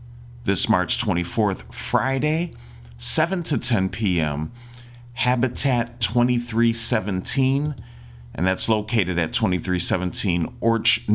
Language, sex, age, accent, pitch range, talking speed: English, male, 40-59, American, 85-120 Hz, 80 wpm